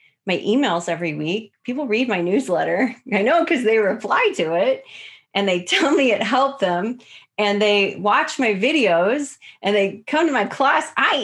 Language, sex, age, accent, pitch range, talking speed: English, female, 30-49, American, 195-265 Hz, 180 wpm